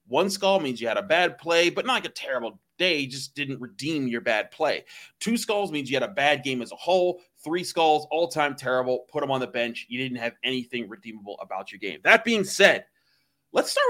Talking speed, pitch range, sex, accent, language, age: 230 wpm, 130-165 Hz, male, American, English, 30-49